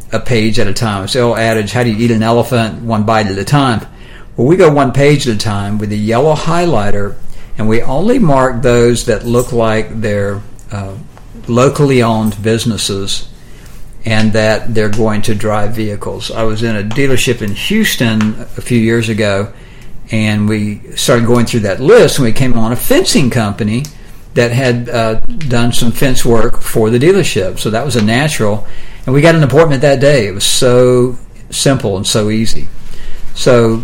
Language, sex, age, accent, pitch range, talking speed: English, male, 60-79, American, 110-125 Hz, 185 wpm